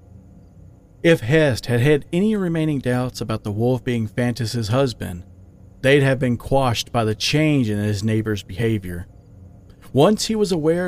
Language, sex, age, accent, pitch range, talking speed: English, male, 40-59, American, 100-140 Hz, 155 wpm